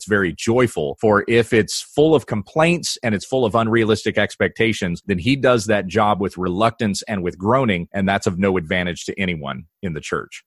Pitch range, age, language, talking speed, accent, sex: 100-130 Hz, 30-49, English, 195 wpm, American, male